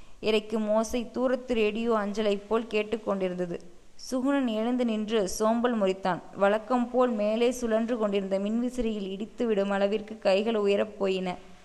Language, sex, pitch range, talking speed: Tamil, female, 200-230 Hz, 120 wpm